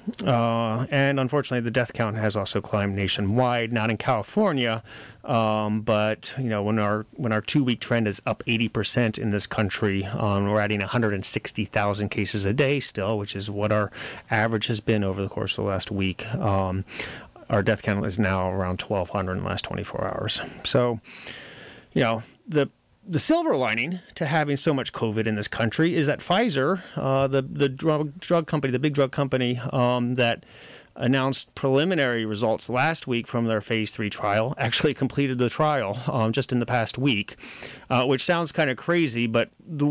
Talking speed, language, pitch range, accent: 185 wpm, English, 105-135 Hz, American